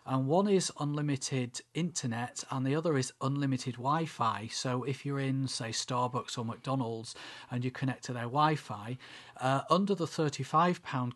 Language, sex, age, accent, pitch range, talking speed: English, male, 40-59, British, 125-145 Hz, 150 wpm